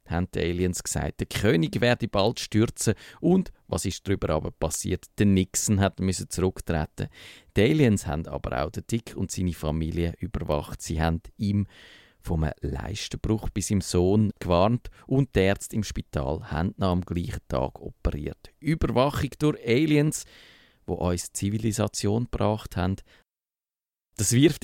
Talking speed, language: 150 wpm, German